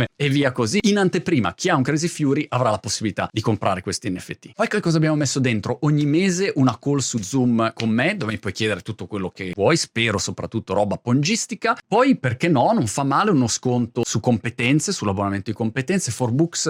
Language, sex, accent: Italian, male, native